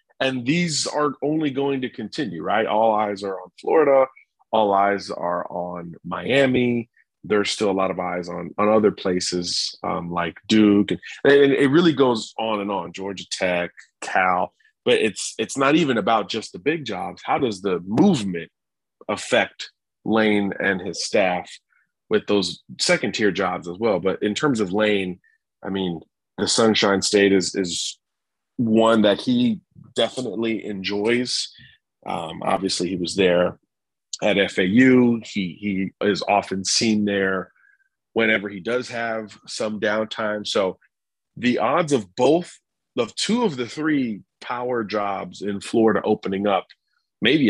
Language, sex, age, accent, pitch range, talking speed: English, male, 30-49, American, 95-125 Hz, 155 wpm